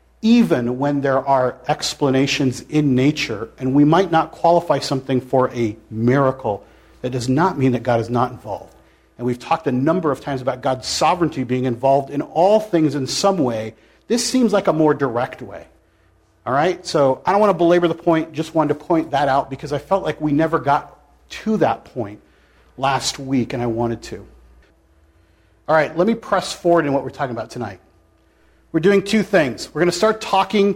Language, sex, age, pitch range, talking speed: English, male, 40-59, 125-175 Hz, 200 wpm